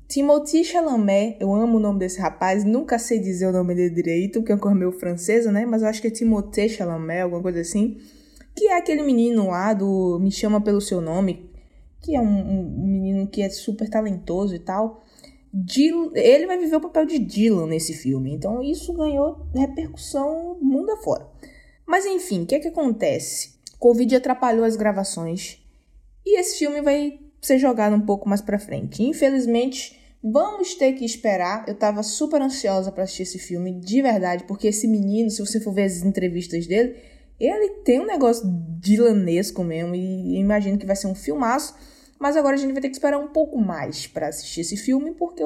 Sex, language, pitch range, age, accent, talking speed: female, Portuguese, 190-270 Hz, 20-39, Brazilian, 190 wpm